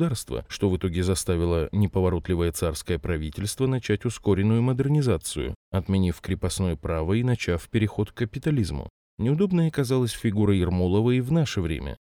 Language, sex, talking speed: Russian, male, 130 wpm